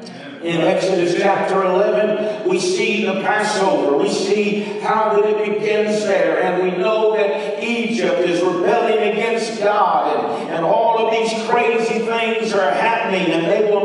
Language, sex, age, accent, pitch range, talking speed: English, male, 50-69, American, 200-235 Hz, 150 wpm